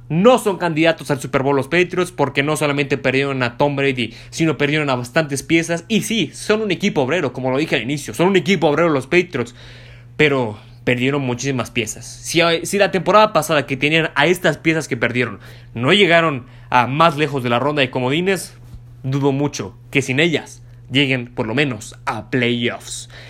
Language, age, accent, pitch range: Spanish, 20-39, Mexican, 130-170 Hz